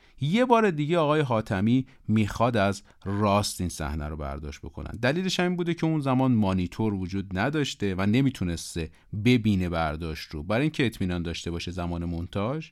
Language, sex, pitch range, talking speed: Persian, male, 90-130 Hz, 160 wpm